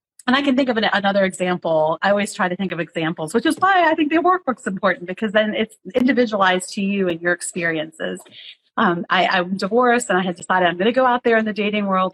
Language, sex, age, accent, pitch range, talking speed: English, female, 30-49, American, 180-245 Hz, 245 wpm